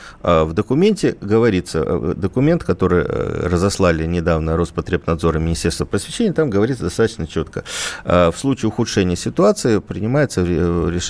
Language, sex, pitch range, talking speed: Russian, male, 80-105 Hz, 110 wpm